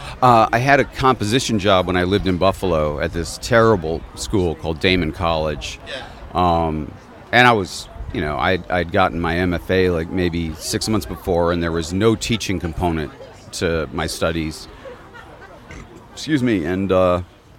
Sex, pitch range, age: male, 85-110 Hz, 40-59